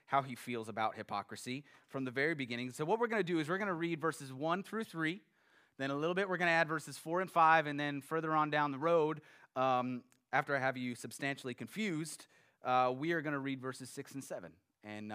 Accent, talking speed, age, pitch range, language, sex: American, 240 wpm, 30-49, 120-165 Hz, English, male